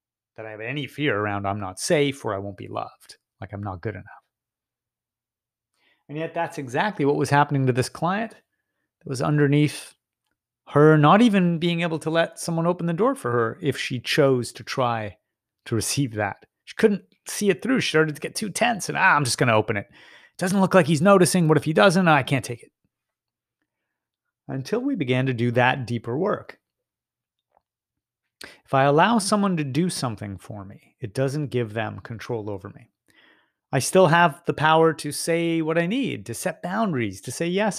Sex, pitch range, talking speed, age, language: male, 115-170 Hz, 200 wpm, 30-49, English